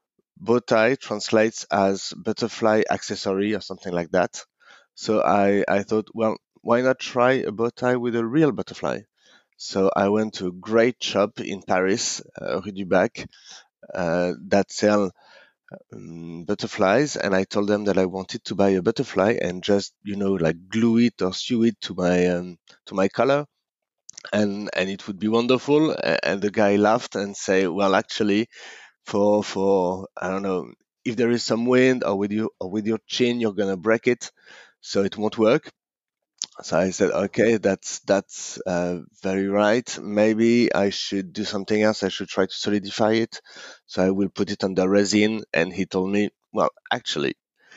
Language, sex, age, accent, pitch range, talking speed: English, male, 30-49, French, 95-110 Hz, 175 wpm